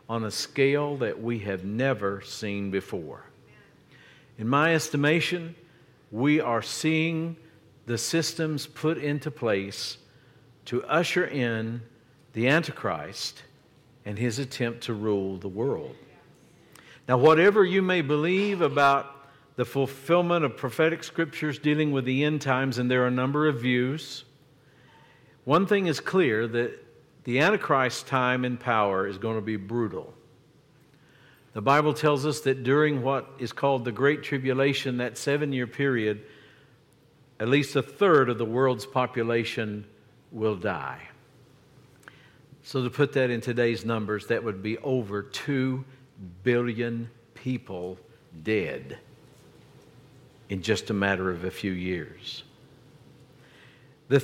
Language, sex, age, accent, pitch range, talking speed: English, male, 50-69, American, 115-145 Hz, 130 wpm